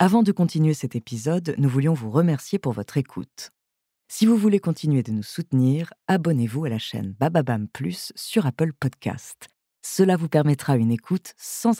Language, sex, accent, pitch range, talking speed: French, female, French, 120-200 Hz, 175 wpm